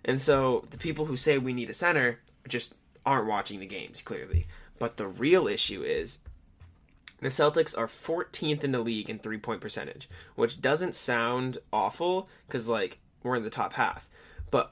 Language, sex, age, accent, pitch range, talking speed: English, male, 20-39, American, 110-140 Hz, 180 wpm